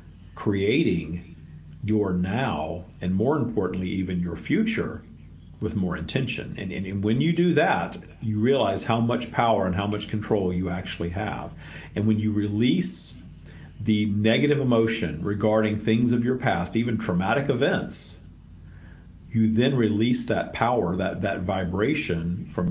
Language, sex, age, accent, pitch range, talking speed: English, male, 50-69, American, 90-110 Hz, 145 wpm